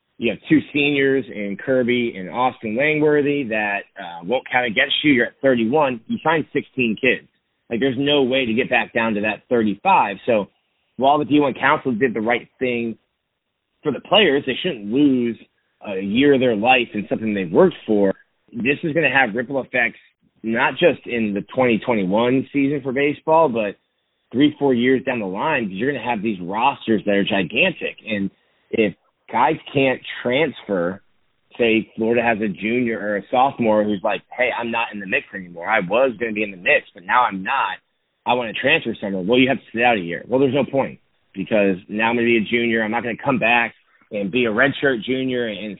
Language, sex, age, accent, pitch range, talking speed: English, male, 30-49, American, 105-135 Hz, 210 wpm